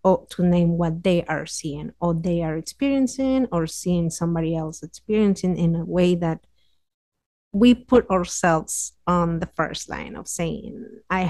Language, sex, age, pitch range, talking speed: English, female, 30-49, 170-195 Hz, 160 wpm